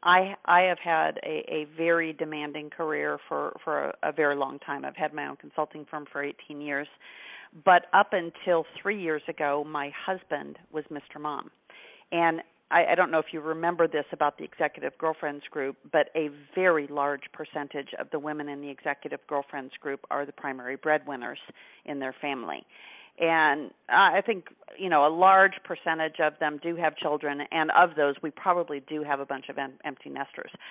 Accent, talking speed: American, 190 wpm